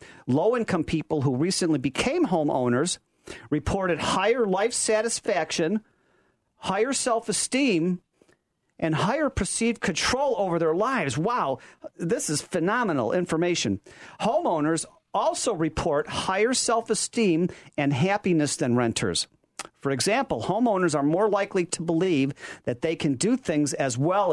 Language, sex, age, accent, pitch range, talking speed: English, male, 40-59, American, 145-195 Hz, 120 wpm